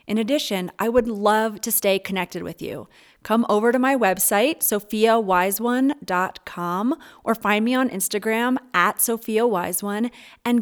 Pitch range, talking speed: 195-230 Hz, 135 wpm